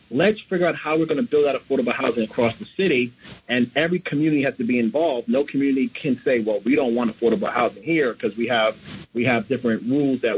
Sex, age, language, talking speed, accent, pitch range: male, 40-59, English, 230 wpm, American, 130-160 Hz